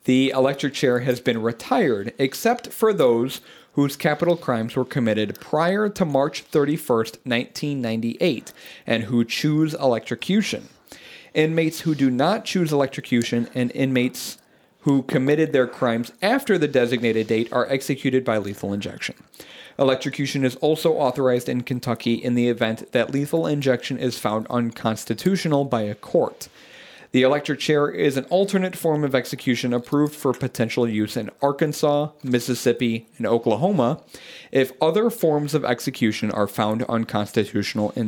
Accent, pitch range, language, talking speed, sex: American, 115-145 Hz, English, 140 wpm, male